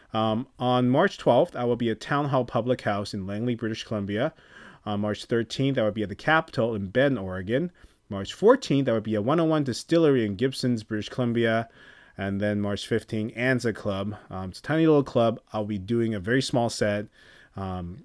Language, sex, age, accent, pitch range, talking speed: English, male, 30-49, American, 105-130 Hz, 200 wpm